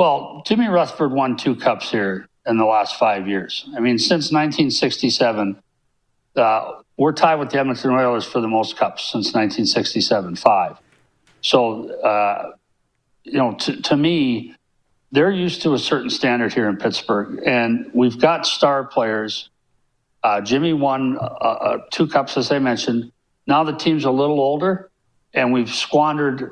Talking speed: 155 wpm